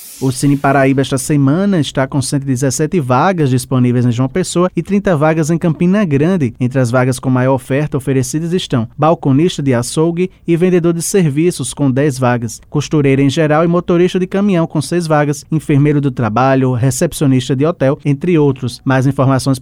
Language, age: Portuguese, 20-39